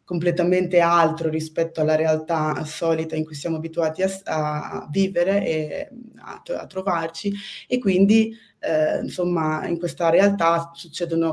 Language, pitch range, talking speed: Italian, 160-185 Hz, 130 wpm